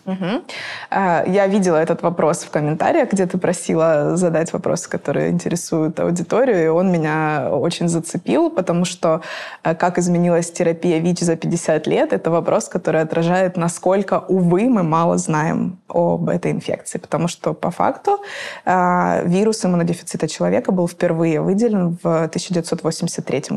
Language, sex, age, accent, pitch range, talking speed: Russian, female, 20-39, native, 165-185 Hz, 130 wpm